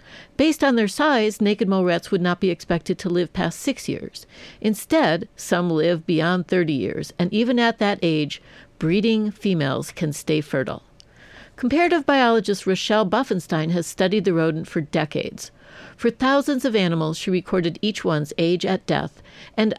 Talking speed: 165 wpm